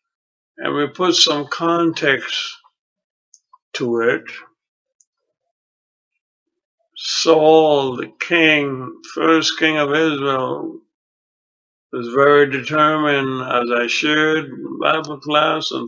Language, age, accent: English, 60-79, American